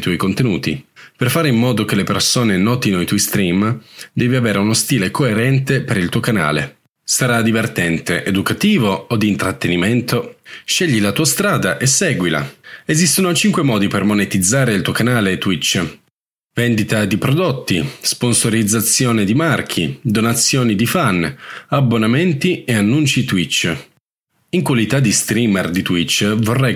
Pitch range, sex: 100-130 Hz, male